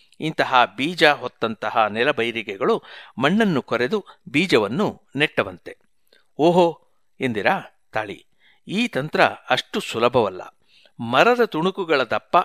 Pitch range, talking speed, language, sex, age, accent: 125-195 Hz, 85 wpm, Kannada, male, 60-79, native